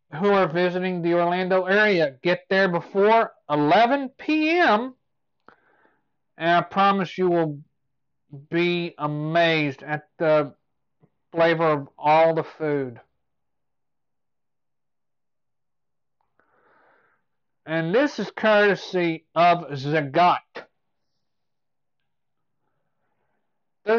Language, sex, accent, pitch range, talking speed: English, male, American, 155-205 Hz, 80 wpm